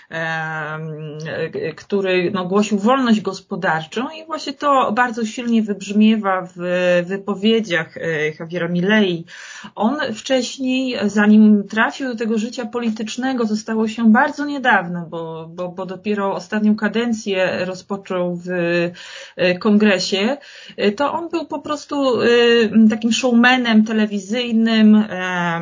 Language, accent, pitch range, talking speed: Polish, native, 195-240 Hz, 105 wpm